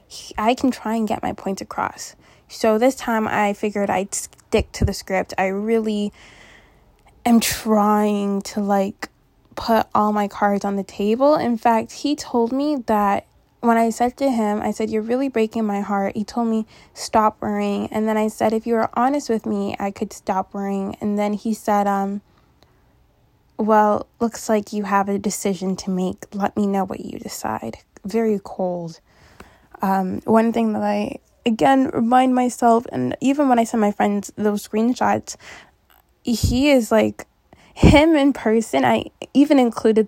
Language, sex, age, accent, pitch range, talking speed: English, female, 10-29, American, 200-230 Hz, 175 wpm